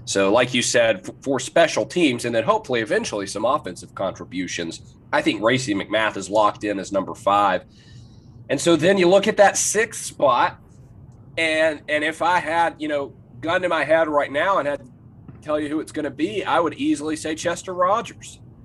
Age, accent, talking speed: 30-49, American, 200 wpm